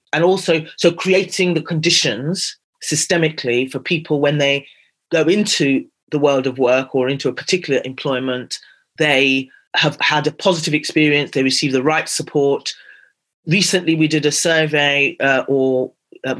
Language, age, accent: English, 30-49, British